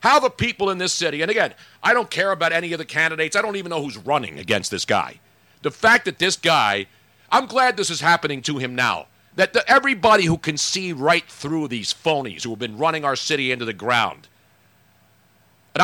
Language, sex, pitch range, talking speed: English, male, 130-190 Hz, 215 wpm